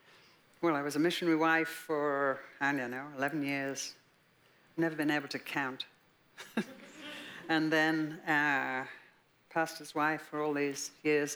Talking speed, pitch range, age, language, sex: 135 wpm, 145-165 Hz, 60-79, English, female